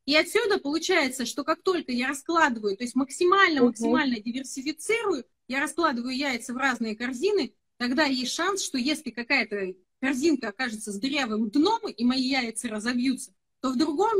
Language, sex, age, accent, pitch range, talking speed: Russian, female, 30-49, native, 235-310 Hz, 150 wpm